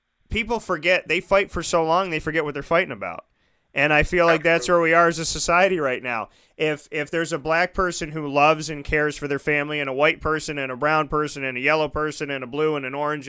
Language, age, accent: English, 30-49, American